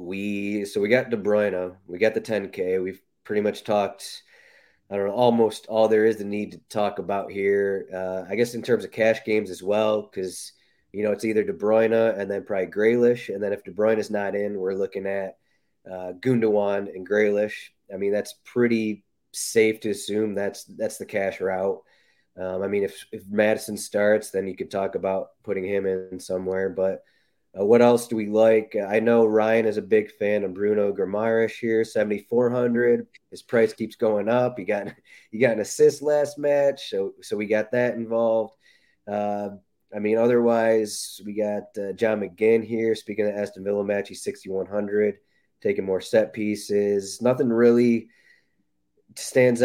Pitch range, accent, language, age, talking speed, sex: 100-115 Hz, American, English, 30-49, 185 wpm, male